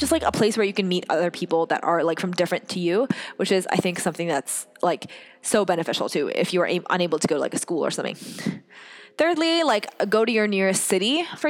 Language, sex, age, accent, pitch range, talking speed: English, female, 20-39, American, 180-240 Hz, 245 wpm